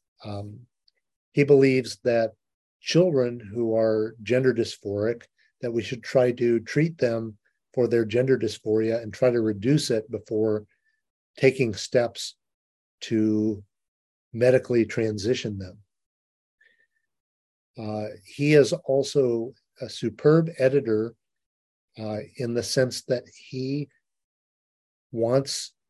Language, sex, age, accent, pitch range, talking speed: English, male, 40-59, American, 110-135 Hz, 105 wpm